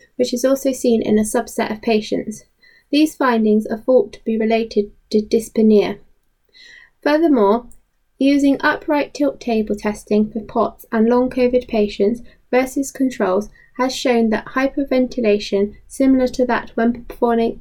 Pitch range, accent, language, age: 215-270 Hz, British, English, 20-39